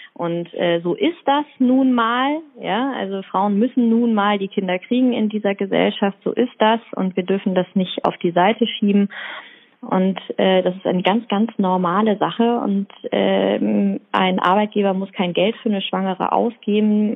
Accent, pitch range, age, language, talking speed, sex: German, 170-215 Hz, 20-39, German, 175 wpm, female